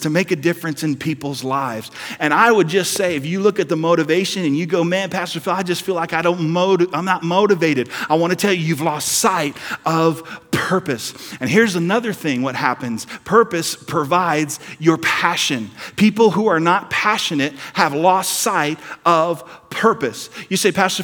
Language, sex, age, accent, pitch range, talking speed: English, male, 40-59, American, 135-185 Hz, 195 wpm